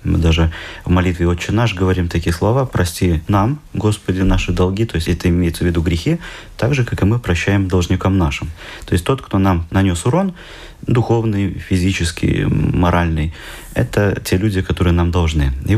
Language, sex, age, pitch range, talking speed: Russian, male, 30-49, 85-115 Hz, 175 wpm